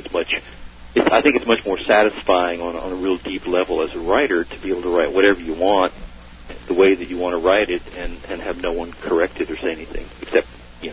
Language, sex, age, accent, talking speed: English, male, 50-69, American, 255 wpm